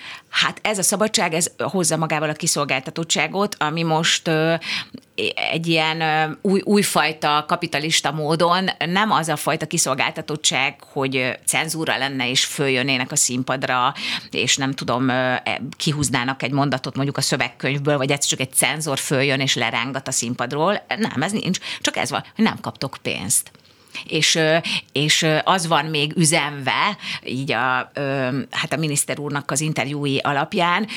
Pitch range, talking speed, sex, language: 135-170 Hz, 140 wpm, female, Hungarian